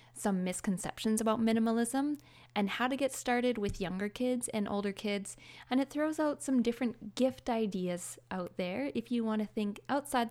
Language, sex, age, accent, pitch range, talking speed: English, female, 20-39, American, 185-235 Hz, 180 wpm